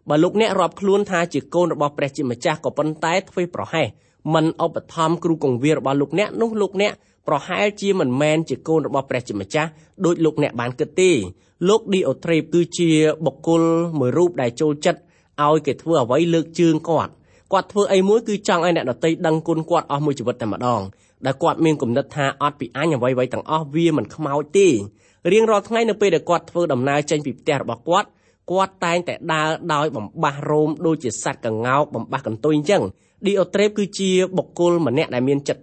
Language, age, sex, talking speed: English, 20-39, male, 40 wpm